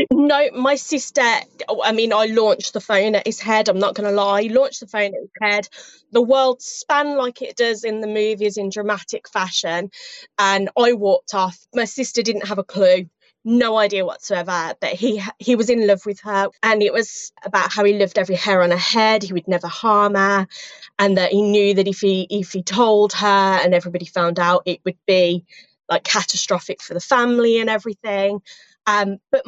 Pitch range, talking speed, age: 190-230 Hz, 205 wpm, 20-39